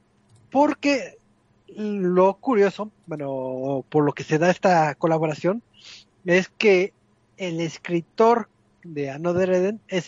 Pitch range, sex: 140-185 Hz, male